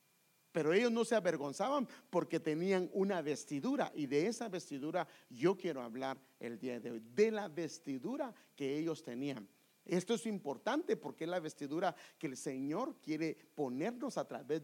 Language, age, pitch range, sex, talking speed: English, 50-69, 140-185 Hz, male, 165 wpm